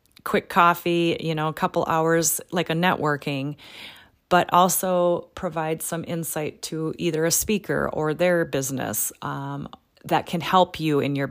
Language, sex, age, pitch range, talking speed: English, female, 30-49, 160-195 Hz, 155 wpm